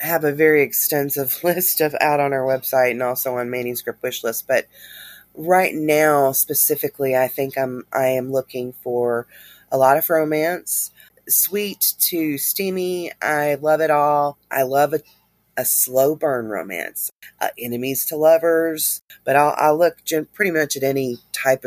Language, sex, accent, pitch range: English, female, American, 130-155 Hz